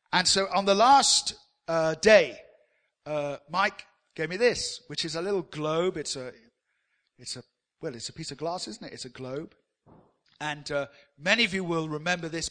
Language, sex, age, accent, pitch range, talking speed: English, male, 50-69, British, 145-185 Hz, 190 wpm